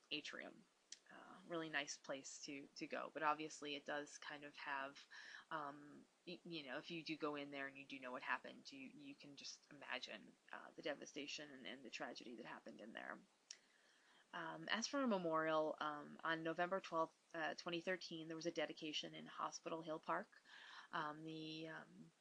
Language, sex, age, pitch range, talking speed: English, female, 20-39, 150-175 Hz, 185 wpm